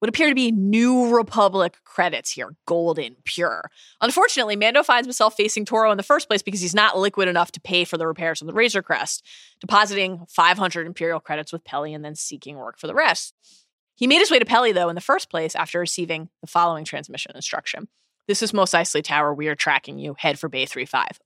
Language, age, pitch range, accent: English, 20-39, 170-265 Hz, American